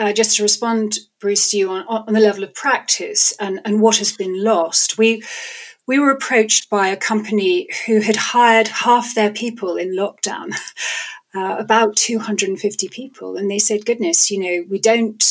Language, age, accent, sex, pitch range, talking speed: English, 40-59, British, female, 205-250 Hz, 180 wpm